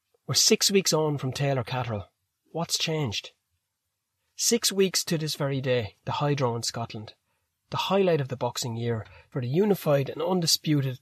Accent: Irish